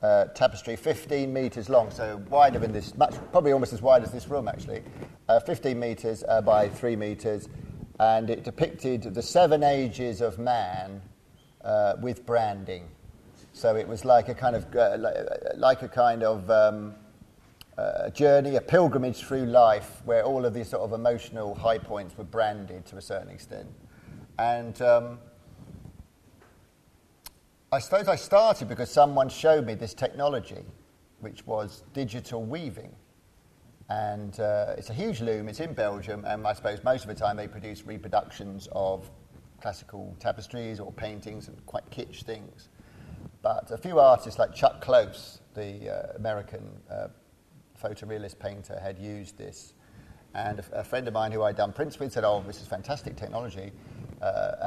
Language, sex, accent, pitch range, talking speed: English, male, British, 105-130 Hz, 160 wpm